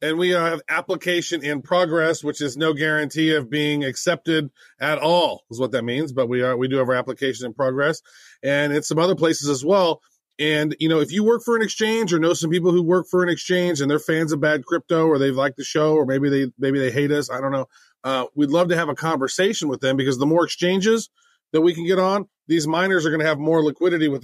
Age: 30-49